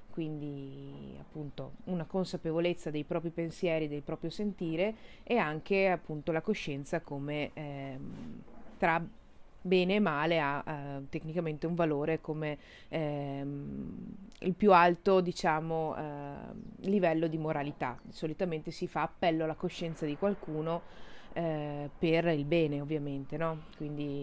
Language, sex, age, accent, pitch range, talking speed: Italian, female, 30-49, native, 155-205 Hz, 125 wpm